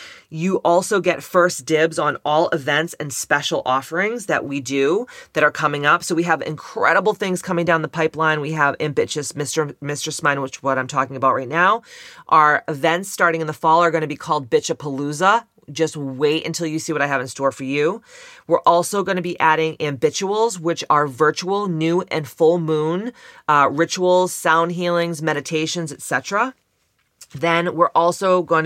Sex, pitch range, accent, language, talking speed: female, 145-175 Hz, American, English, 190 wpm